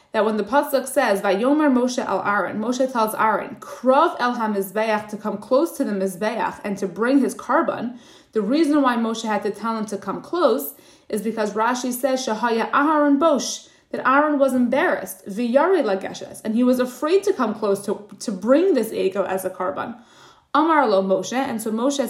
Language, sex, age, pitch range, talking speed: English, female, 20-39, 205-270 Hz, 185 wpm